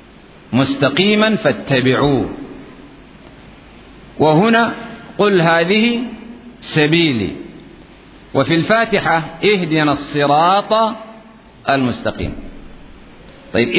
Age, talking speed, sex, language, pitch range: 50-69, 50 wpm, male, Arabic, 145-205 Hz